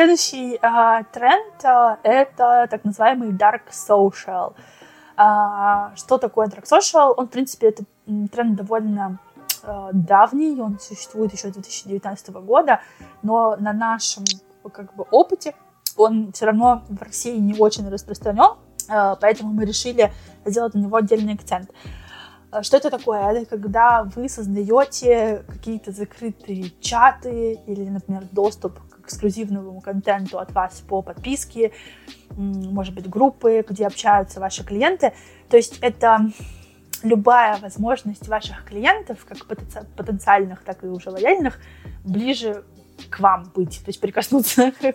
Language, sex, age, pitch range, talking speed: Russian, female, 20-39, 195-230 Hz, 120 wpm